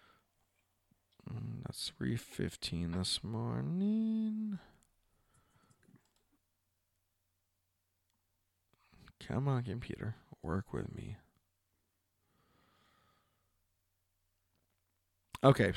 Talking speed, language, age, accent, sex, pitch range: 40 wpm, English, 20-39, American, male, 105-125 Hz